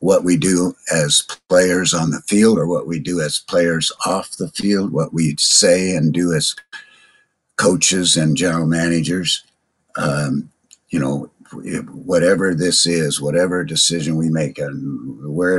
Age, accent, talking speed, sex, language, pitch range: 60-79, American, 150 wpm, male, English, 80-90 Hz